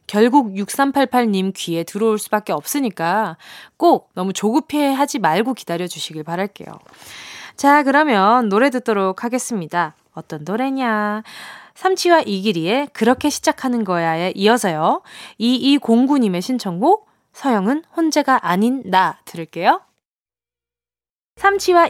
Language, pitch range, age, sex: Korean, 190-290 Hz, 20-39, female